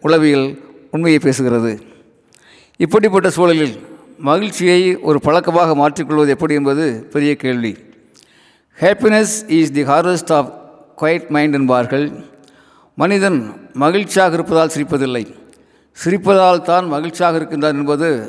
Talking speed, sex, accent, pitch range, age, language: 100 wpm, male, native, 140-170 Hz, 50-69, Tamil